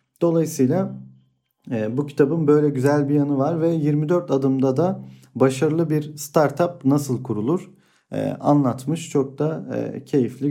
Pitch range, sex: 120-145 Hz, male